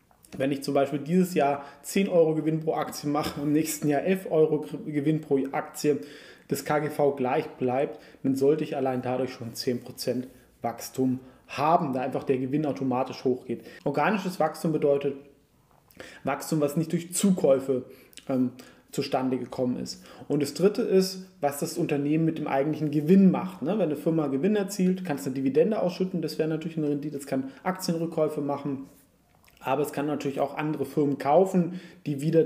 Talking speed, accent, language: 175 wpm, German, German